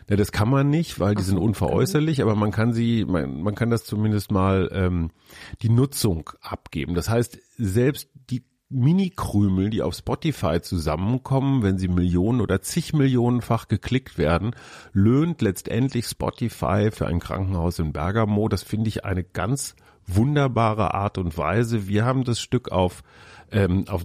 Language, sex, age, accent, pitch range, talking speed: German, male, 40-59, German, 95-125 Hz, 160 wpm